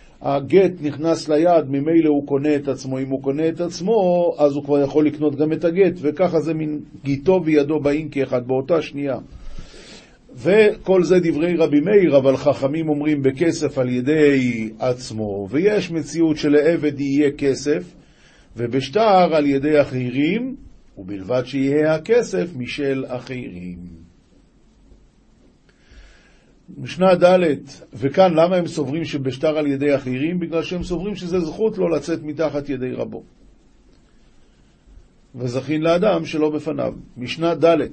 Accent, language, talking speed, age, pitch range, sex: native, Hebrew, 130 wpm, 50-69, 130-165 Hz, male